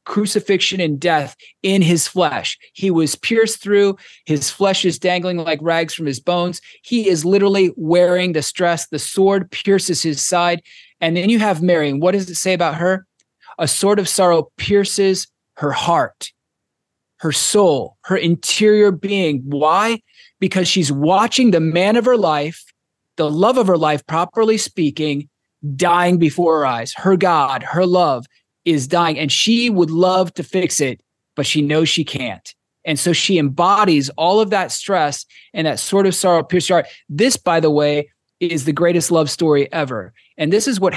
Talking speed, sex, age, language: 175 wpm, male, 30-49, English